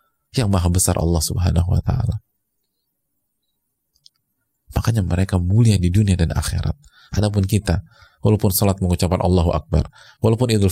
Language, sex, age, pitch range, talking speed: Indonesian, male, 30-49, 90-115 Hz, 130 wpm